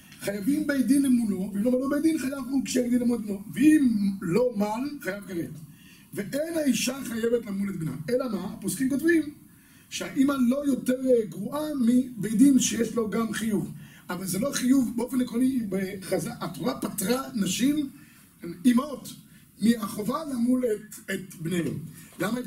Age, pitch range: 50-69, 180-240 Hz